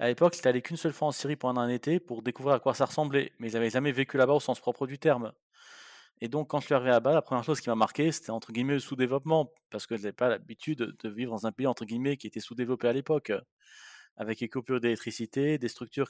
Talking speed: 270 wpm